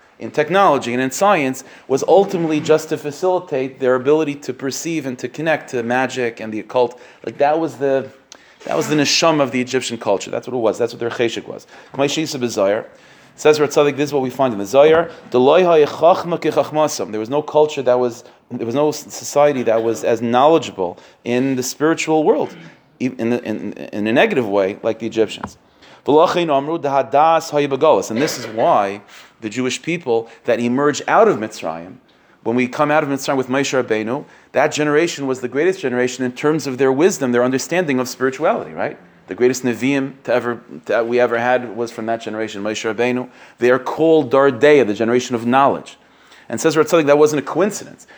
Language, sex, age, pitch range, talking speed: English, male, 30-49, 125-150 Hz, 185 wpm